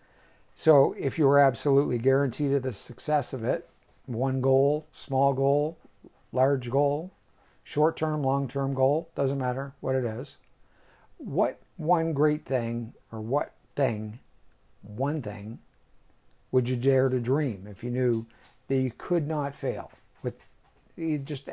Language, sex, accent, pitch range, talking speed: English, male, American, 120-145 Hz, 145 wpm